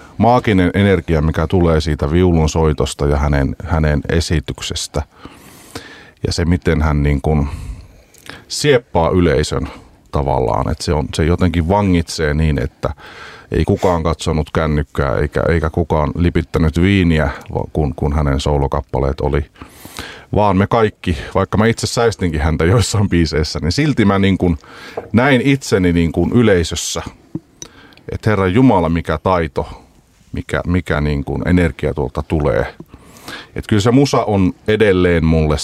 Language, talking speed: Finnish, 135 wpm